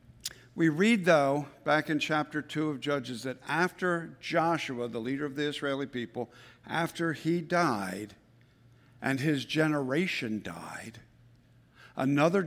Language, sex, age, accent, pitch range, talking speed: English, male, 60-79, American, 125-160 Hz, 125 wpm